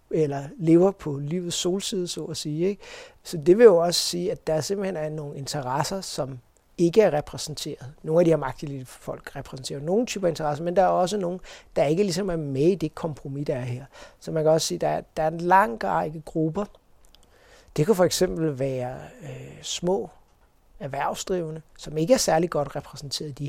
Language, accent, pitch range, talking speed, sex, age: Danish, native, 145-175 Hz, 200 wpm, male, 60-79